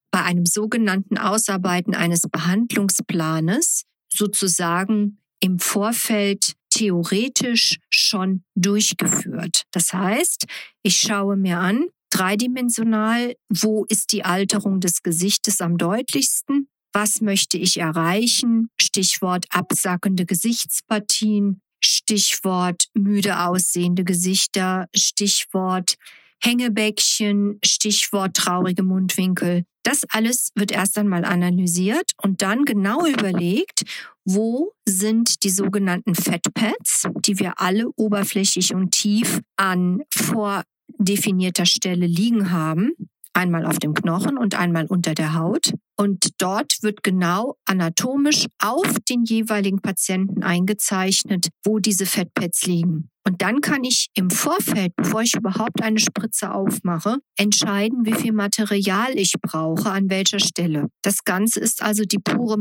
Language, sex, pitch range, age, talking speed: German, female, 185-215 Hz, 50-69, 115 wpm